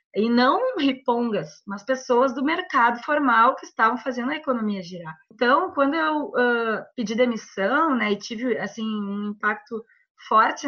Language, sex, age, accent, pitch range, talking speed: Portuguese, female, 20-39, Brazilian, 205-255 Hz, 150 wpm